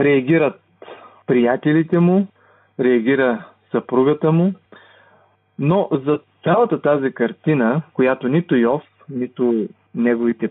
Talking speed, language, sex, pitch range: 90 wpm, Bulgarian, male, 125-165 Hz